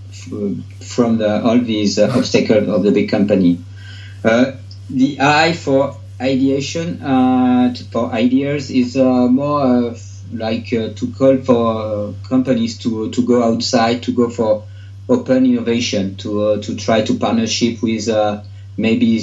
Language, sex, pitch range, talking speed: English, male, 105-125 Hz, 140 wpm